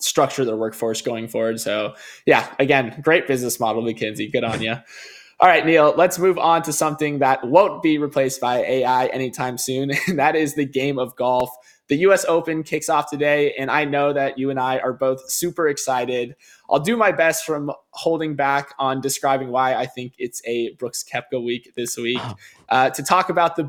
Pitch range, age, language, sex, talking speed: 125-155 Hz, 20-39, English, male, 200 wpm